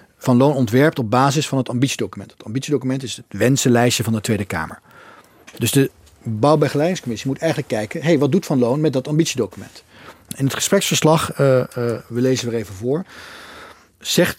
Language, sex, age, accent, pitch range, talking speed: Dutch, male, 40-59, Dutch, 120-150 Hz, 170 wpm